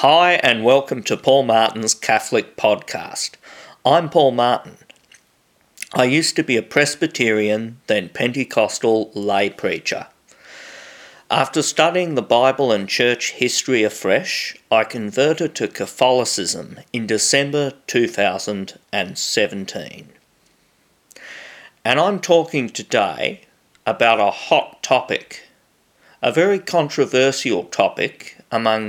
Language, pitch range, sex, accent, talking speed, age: English, 115-150 Hz, male, Australian, 100 wpm, 50-69